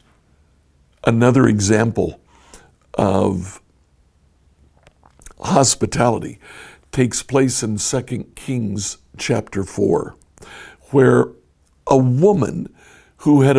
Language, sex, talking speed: English, male, 70 wpm